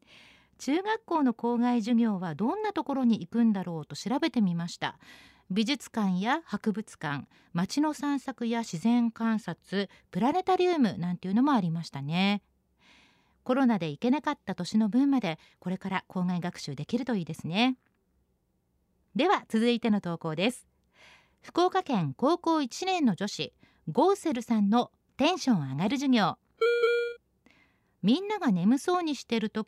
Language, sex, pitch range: Japanese, female, 195-275 Hz